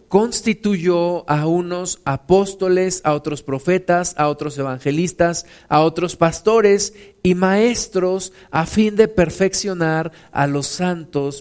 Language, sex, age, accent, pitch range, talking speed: Spanish, male, 50-69, Mexican, 155-200 Hz, 115 wpm